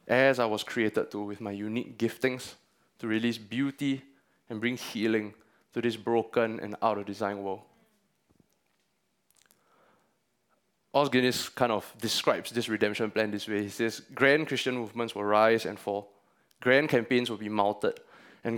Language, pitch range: English, 110-130 Hz